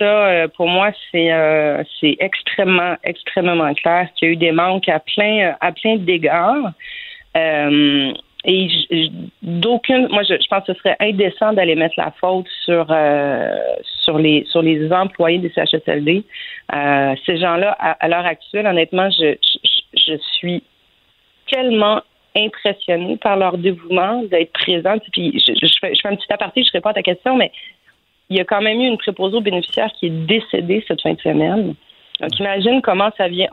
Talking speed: 185 wpm